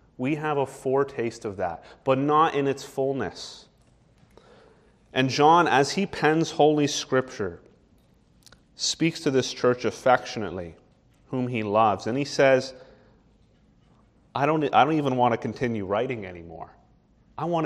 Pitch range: 110-145 Hz